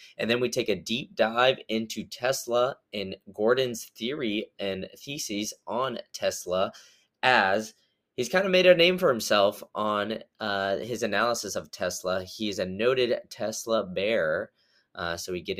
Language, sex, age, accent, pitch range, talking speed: English, male, 20-39, American, 90-110 Hz, 155 wpm